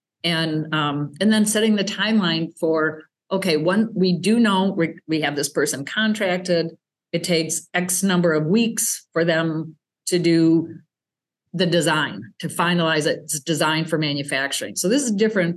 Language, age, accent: English, 50-69, American